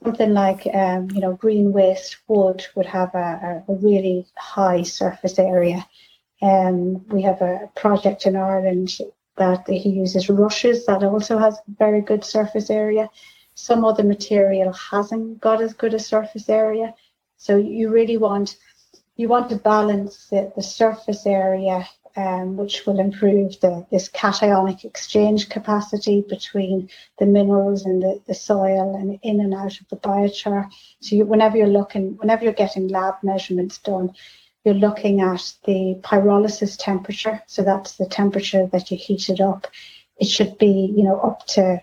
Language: English